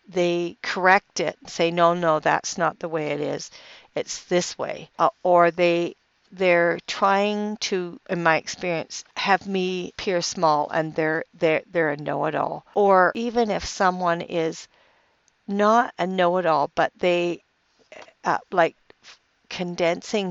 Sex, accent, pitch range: female, American, 160-190 Hz